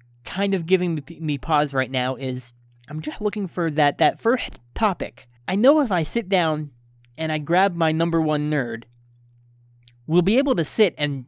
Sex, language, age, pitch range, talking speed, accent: male, English, 20-39, 120-180 Hz, 185 wpm, American